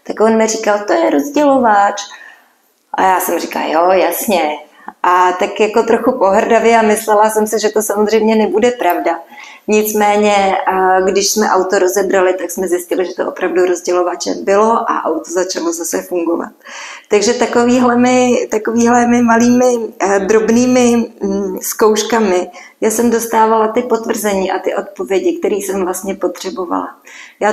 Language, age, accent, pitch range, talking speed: Czech, 20-39, native, 185-225 Hz, 140 wpm